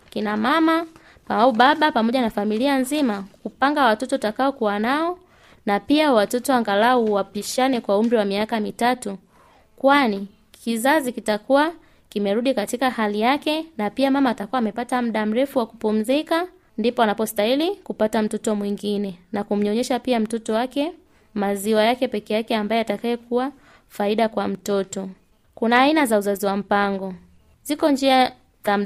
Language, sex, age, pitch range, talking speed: Swahili, female, 20-39, 205-270 Hz, 140 wpm